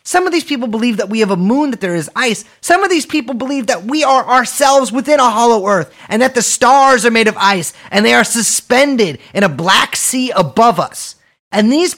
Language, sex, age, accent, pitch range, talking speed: English, male, 30-49, American, 155-235 Hz, 235 wpm